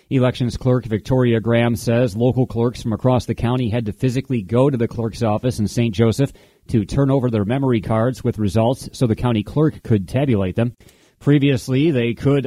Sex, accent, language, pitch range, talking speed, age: male, American, English, 105-125 Hz, 190 wpm, 30-49